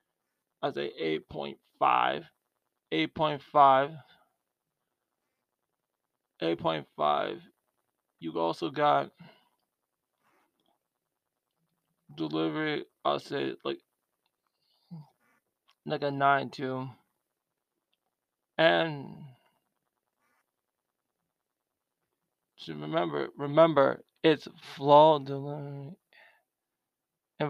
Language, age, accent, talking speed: English, 20-39, American, 65 wpm